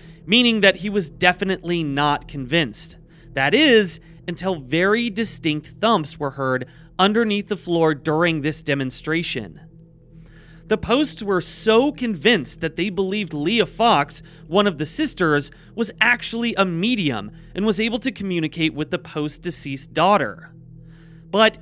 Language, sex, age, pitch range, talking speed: English, male, 30-49, 155-205 Hz, 140 wpm